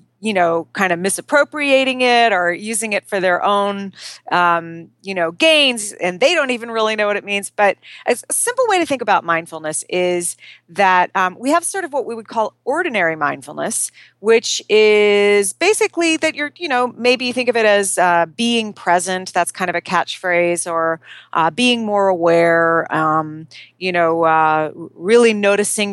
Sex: female